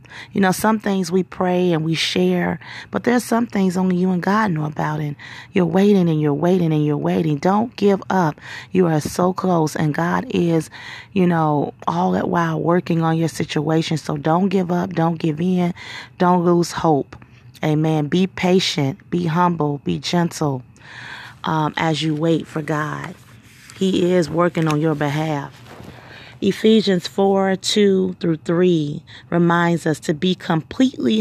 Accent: American